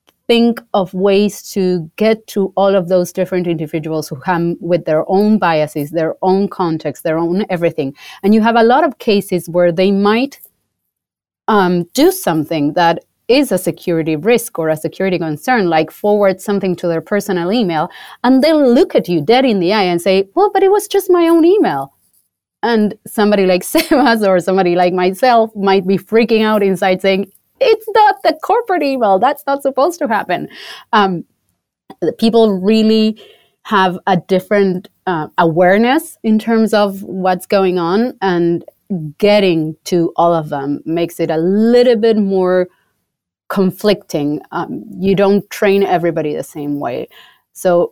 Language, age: English, 30-49